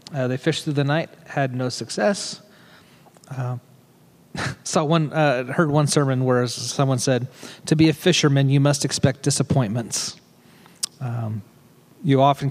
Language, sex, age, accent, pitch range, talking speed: English, male, 30-49, American, 125-160 Hz, 140 wpm